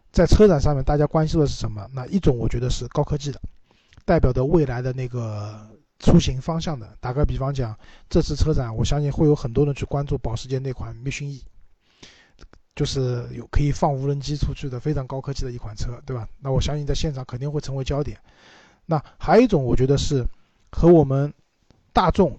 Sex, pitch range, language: male, 125-155 Hz, Chinese